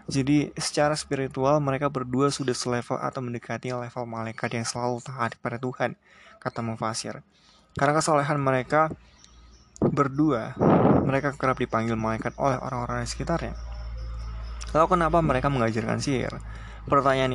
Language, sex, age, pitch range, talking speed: Indonesian, male, 20-39, 120-150 Hz, 125 wpm